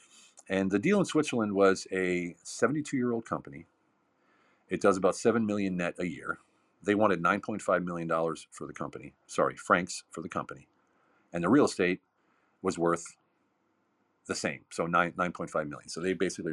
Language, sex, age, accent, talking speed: English, male, 40-59, American, 160 wpm